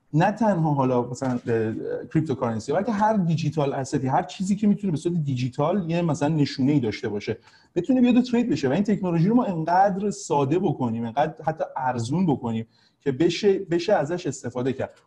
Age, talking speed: 30-49, 185 wpm